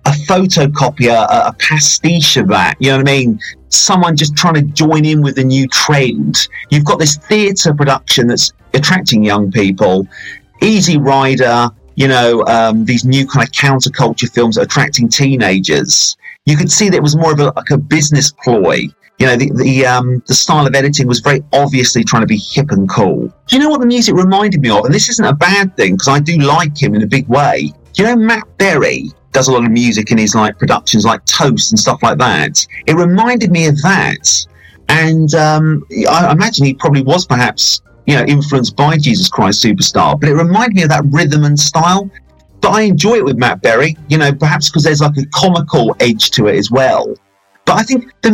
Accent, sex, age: British, male, 40-59